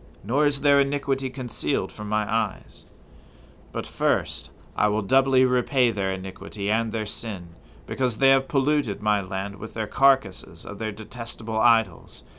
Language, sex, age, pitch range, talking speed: English, male, 40-59, 100-130 Hz, 155 wpm